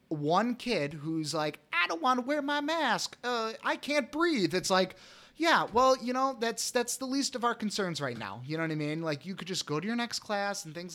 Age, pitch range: 30-49, 165-225 Hz